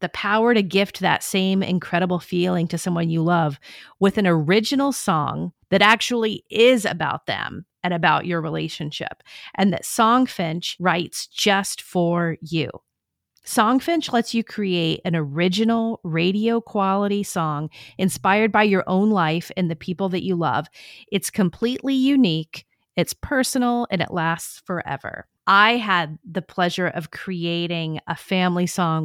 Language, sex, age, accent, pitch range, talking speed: English, female, 40-59, American, 170-210 Hz, 145 wpm